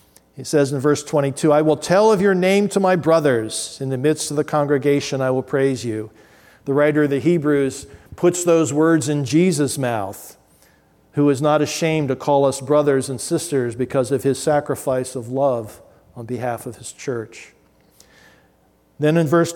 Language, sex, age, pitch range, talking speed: English, male, 50-69, 130-160 Hz, 180 wpm